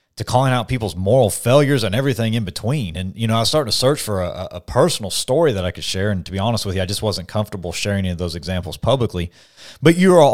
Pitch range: 95-115 Hz